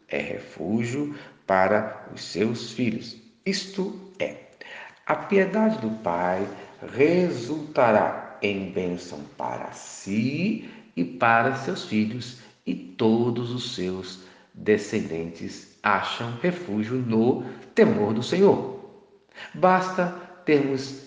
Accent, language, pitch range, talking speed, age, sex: Brazilian, Portuguese, 95-160 Hz, 95 wpm, 50-69, male